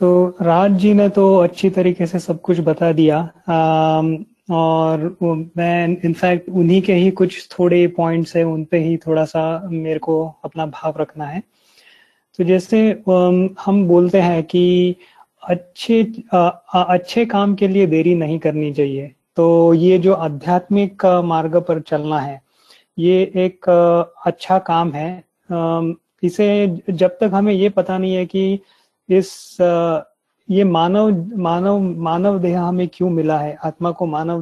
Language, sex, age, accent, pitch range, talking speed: Hindi, male, 30-49, native, 165-190 Hz, 145 wpm